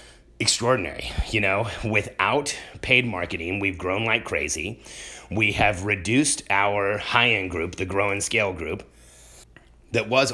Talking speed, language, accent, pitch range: 135 wpm, English, American, 95-115 Hz